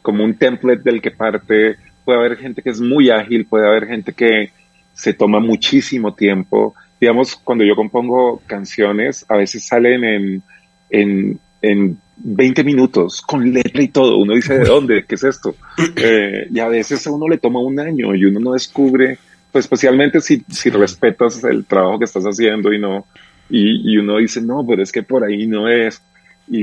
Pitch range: 105-130 Hz